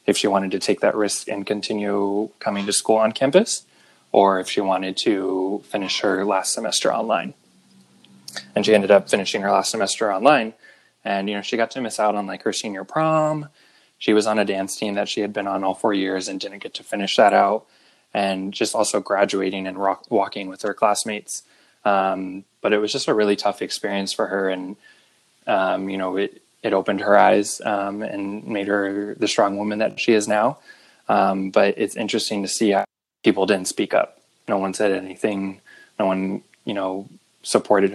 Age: 20-39